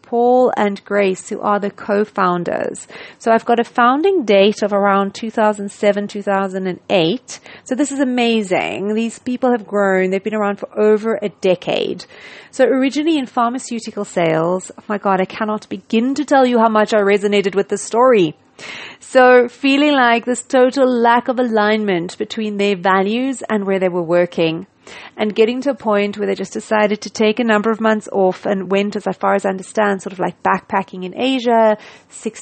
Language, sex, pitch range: English, female, 195-240 Hz